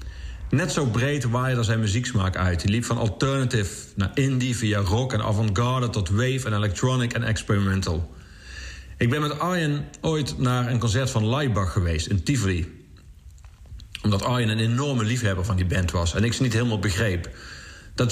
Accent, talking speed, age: Dutch, 170 wpm, 40-59